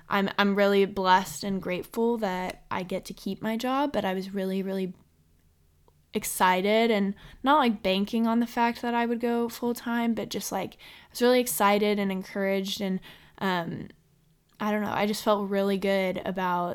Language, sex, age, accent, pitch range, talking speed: English, female, 10-29, American, 180-205 Hz, 185 wpm